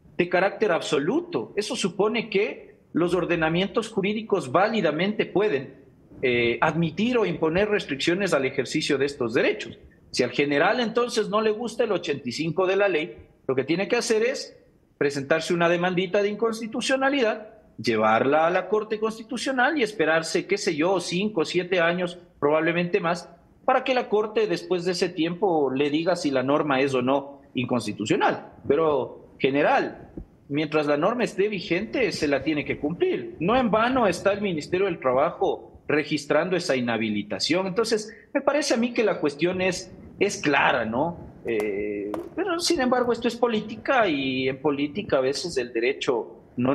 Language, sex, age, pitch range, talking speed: English, male, 40-59, 140-220 Hz, 165 wpm